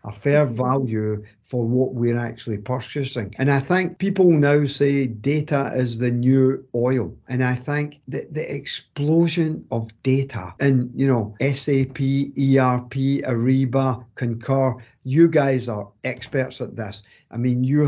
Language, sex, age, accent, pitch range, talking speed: English, male, 50-69, British, 125-150 Hz, 145 wpm